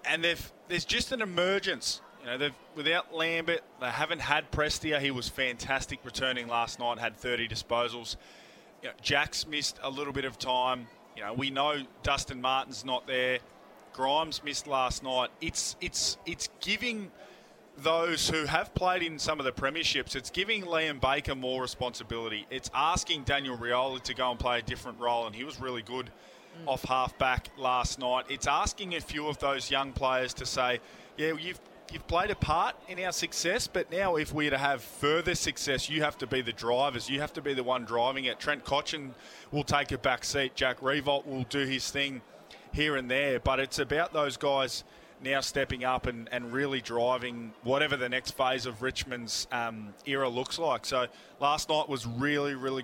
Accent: Australian